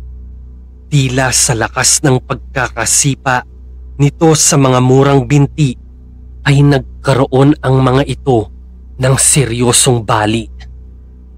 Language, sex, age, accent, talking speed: Filipino, male, 30-49, native, 95 wpm